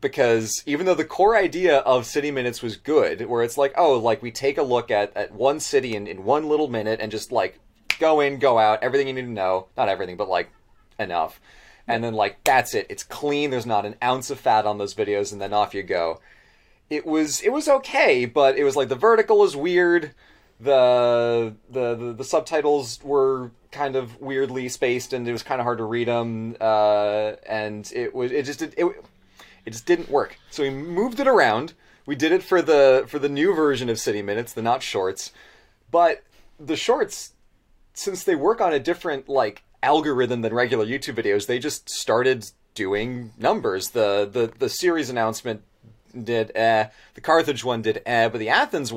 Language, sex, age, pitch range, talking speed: English, male, 30-49, 110-150 Hz, 205 wpm